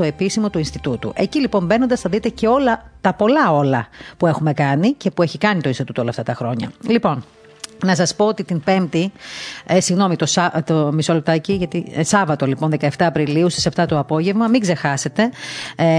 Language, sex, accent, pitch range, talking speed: Greek, female, native, 150-200 Hz, 205 wpm